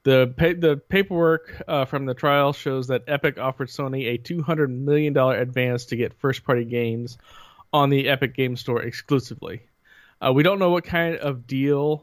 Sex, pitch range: male, 120-145 Hz